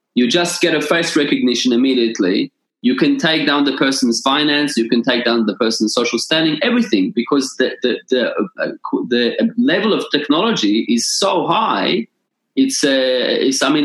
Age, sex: 20-39, male